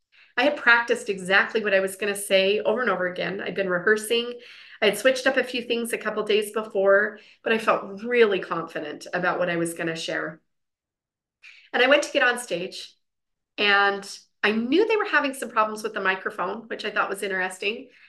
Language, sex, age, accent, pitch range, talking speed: English, female, 30-49, American, 200-250 Hz, 210 wpm